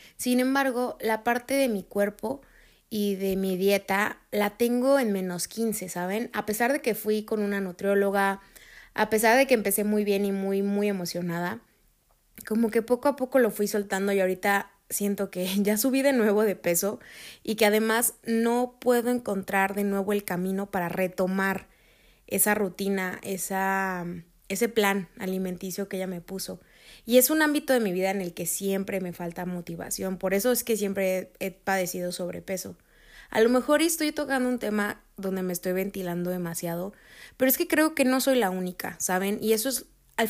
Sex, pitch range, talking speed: female, 190-230 Hz, 185 wpm